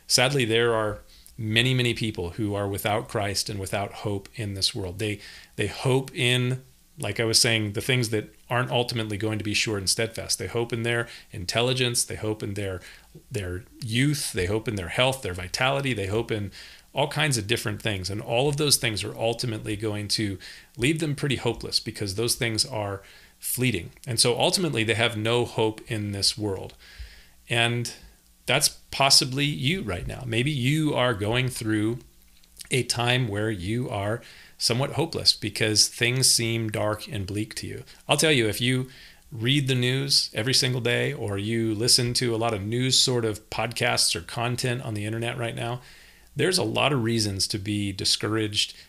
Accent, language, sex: American, English, male